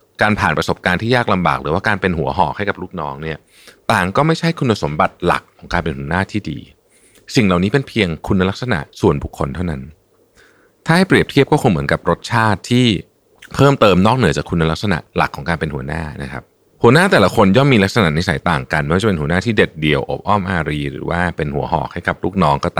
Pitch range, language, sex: 80-120 Hz, Thai, male